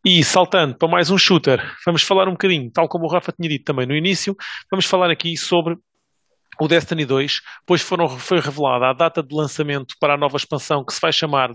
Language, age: English, 30-49